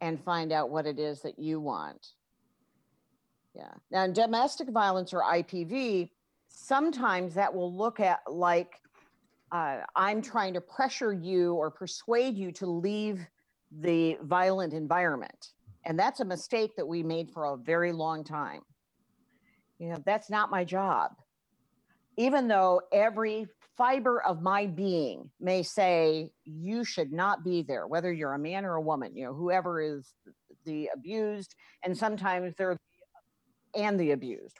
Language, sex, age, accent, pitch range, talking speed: English, female, 50-69, American, 165-215 Hz, 155 wpm